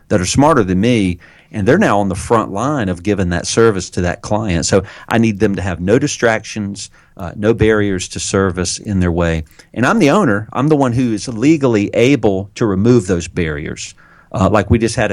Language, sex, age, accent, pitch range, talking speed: English, male, 40-59, American, 90-120 Hz, 220 wpm